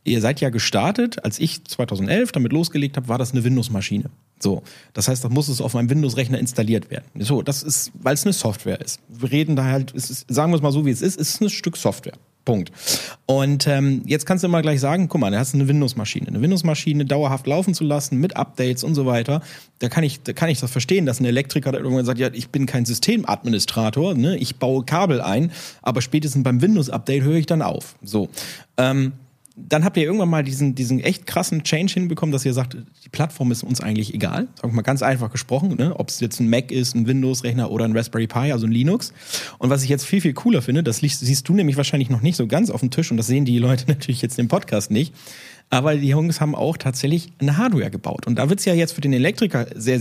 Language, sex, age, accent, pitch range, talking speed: German, male, 40-59, German, 125-155 Hz, 245 wpm